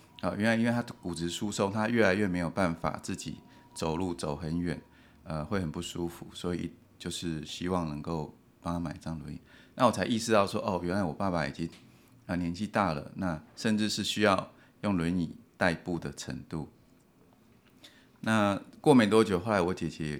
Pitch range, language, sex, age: 85-105 Hz, Chinese, male, 30-49